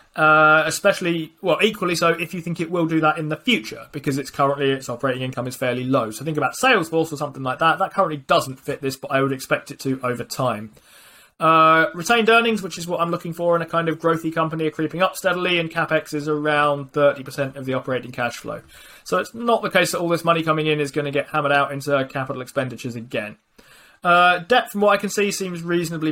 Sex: male